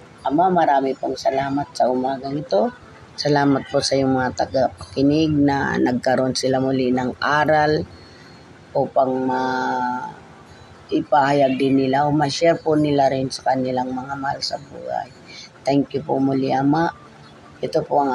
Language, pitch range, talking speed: Filipino, 125-140 Hz, 140 wpm